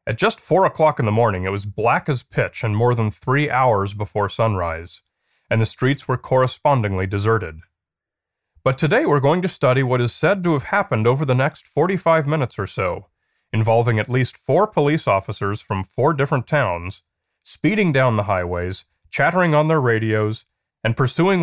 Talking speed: 180 wpm